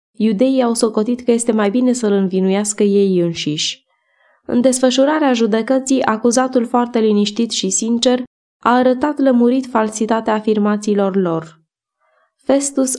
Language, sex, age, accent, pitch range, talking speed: Romanian, female, 20-39, native, 190-235 Hz, 125 wpm